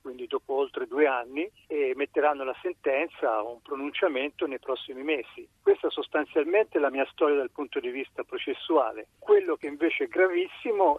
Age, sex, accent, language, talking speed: 50-69, male, native, Italian, 175 wpm